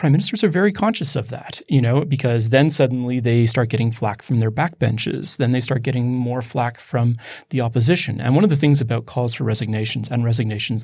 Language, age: English, 30-49